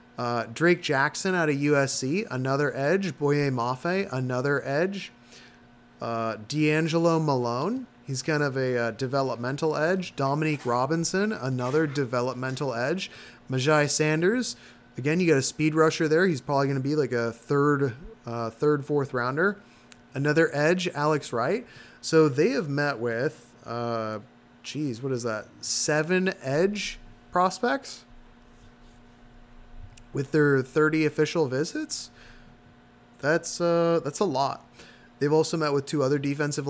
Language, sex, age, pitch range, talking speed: English, male, 30-49, 130-155 Hz, 135 wpm